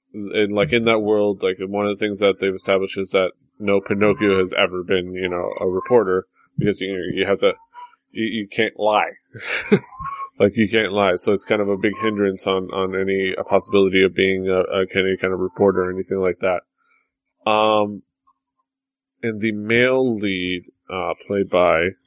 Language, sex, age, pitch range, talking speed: English, male, 20-39, 100-135 Hz, 190 wpm